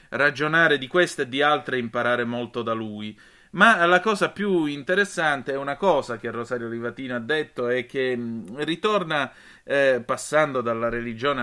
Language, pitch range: Italian, 120-150 Hz